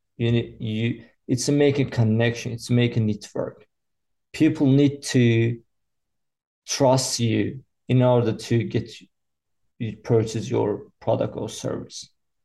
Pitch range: 110-135 Hz